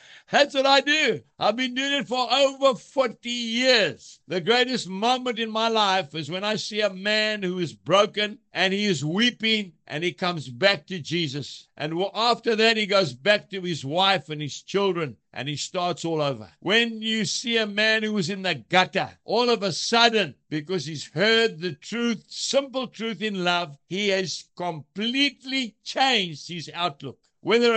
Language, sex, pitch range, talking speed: English, male, 155-225 Hz, 180 wpm